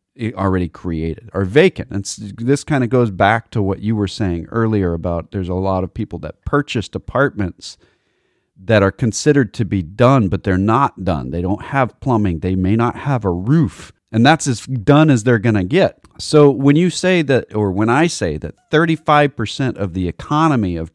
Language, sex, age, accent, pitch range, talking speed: English, male, 40-59, American, 95-125 Hz, 200 wpm